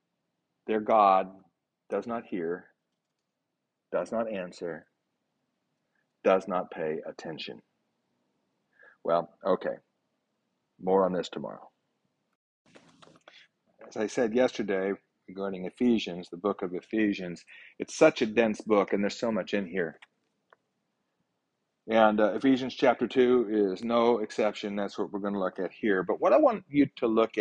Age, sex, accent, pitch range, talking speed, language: 40-59, male, American, 100-125 Hz, 135 wpm, English